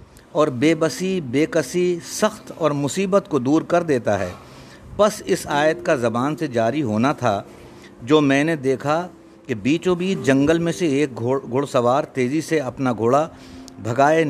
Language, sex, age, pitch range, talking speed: Urdu, male, 50-69, 120-165 Hz, 170 wpm